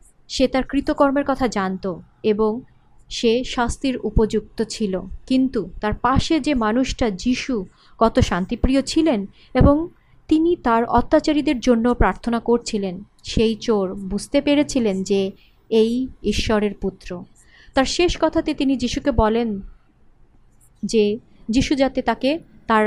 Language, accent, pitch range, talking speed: Bengali, native, 210-280 Hz, 115 wpm